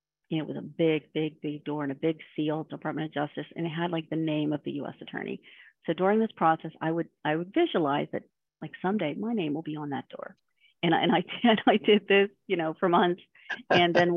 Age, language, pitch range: 40-59, English, 155-175 Hz